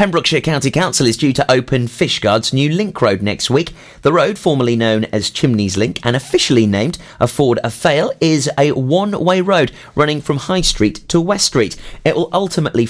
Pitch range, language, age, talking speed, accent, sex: 115-165 Hz, English, 30-49, 180 wpm, British, male